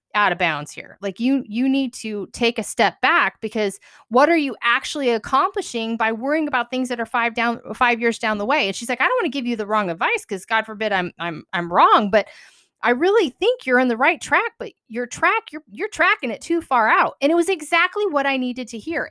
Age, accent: 30-49, American